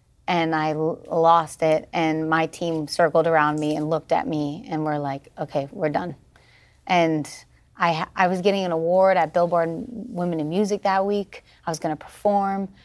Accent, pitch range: American, 160-190 Hz